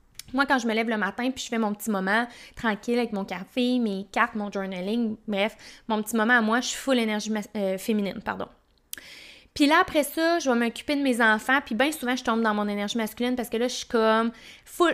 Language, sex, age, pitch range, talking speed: French, female, 20-39, 220-260 Hz, 245 wpm